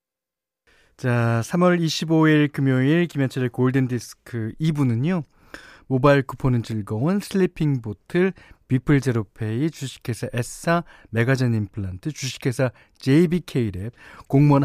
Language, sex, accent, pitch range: Korean, male, native, 110-155 Hz